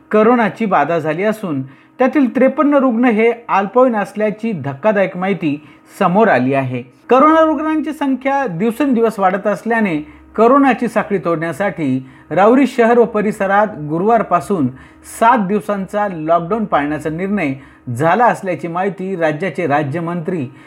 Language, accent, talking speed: Marathi, native, 65 wpm